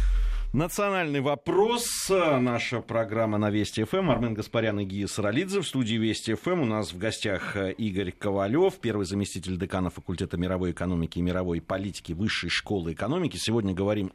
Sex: male